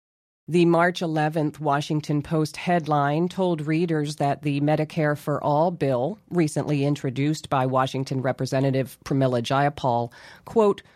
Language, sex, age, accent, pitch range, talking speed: English, female, 40-59, American, 140-175 Hz, 120 wpm